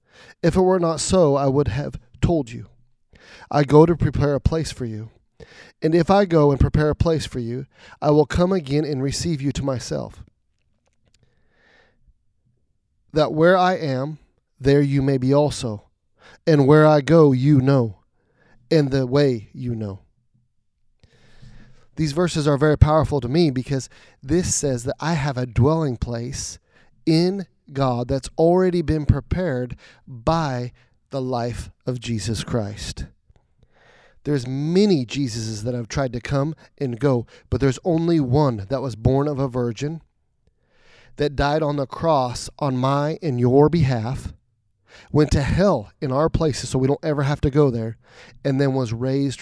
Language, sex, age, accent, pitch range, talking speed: English, male, 30-49, American, 125-155 Hz, 160 wpm